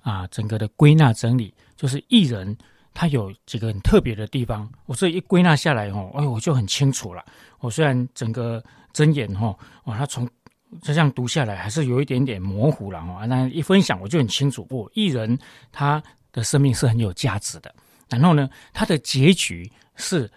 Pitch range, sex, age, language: 115-155 Hz, male, 40-59, Chinese